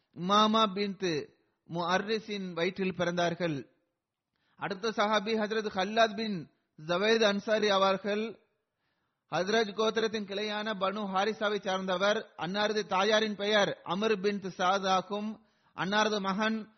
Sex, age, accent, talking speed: male, 30-49, native, 95 wpm